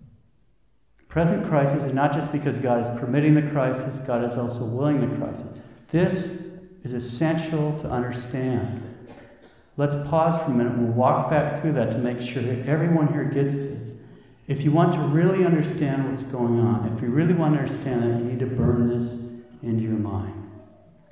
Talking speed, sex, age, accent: 185 wpm, male, 50-69, American